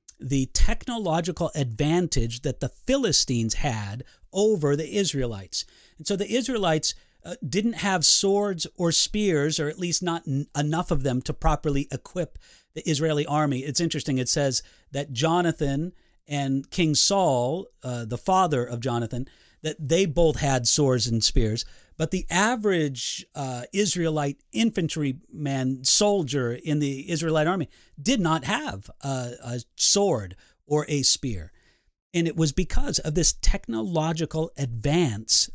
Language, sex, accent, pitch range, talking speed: English, male, American, 130-165 Hz, 140 wpm